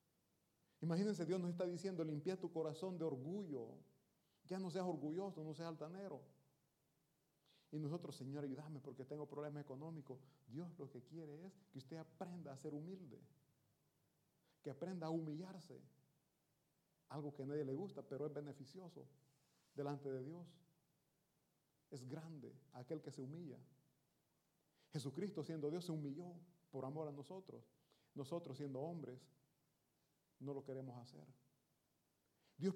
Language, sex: Italian, male